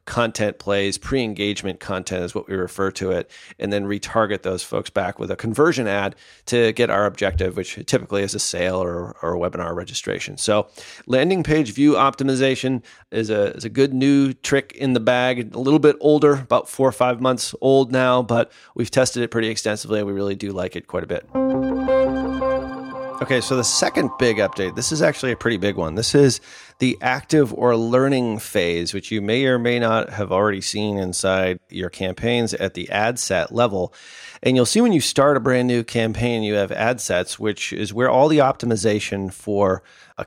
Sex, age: male, 30-49